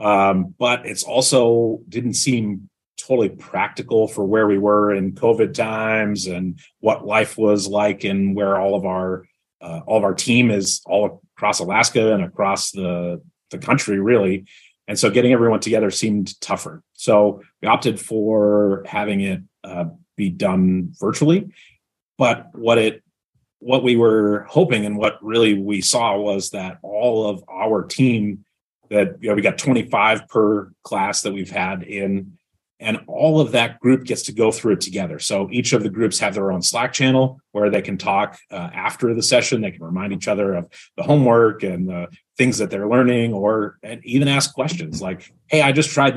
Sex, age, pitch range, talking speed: male, 30-49, 100-125 Hz, 180 wpm